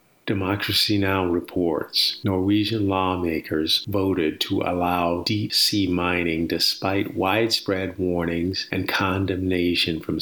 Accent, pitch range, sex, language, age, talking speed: American, 85-100 Hz, male, English, 50-69, 100 wpm